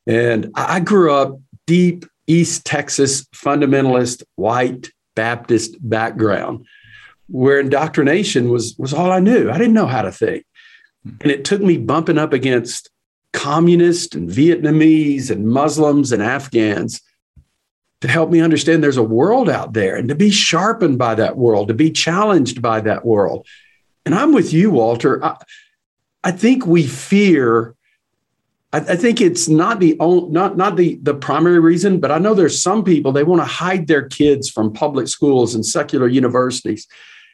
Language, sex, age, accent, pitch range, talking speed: English, male, 50-69, American, 130-180 Hz, 160 wpm